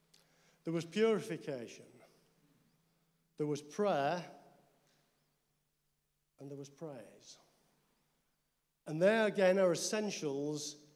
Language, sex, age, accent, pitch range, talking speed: English, male, 50-69, British, 150-200 Hz, 80 wpm